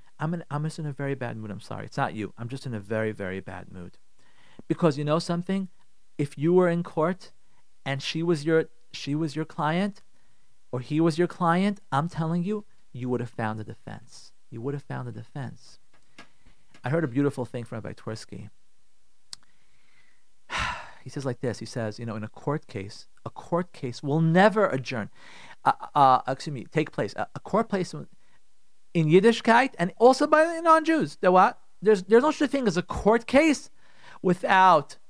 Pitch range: 130-205 Hz